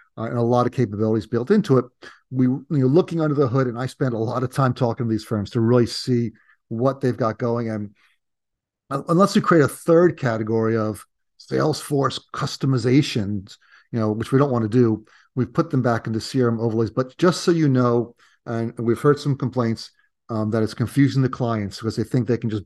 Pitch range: 115-140 Hz